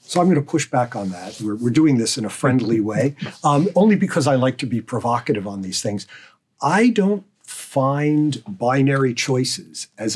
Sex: male